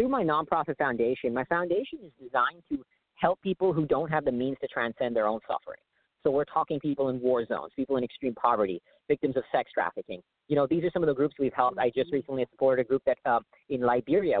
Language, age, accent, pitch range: English, 40-59, American, 125-160 Hz